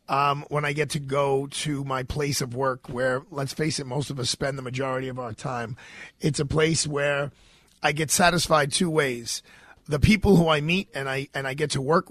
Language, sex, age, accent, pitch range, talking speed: English, male, 40-59, American, 130-155 Hz, 235 wpm